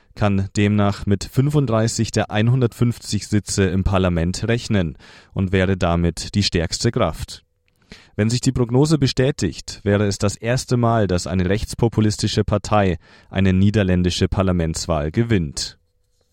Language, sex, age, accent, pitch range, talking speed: German, male, 30-49, German, 95-115 Hz, 125 wpm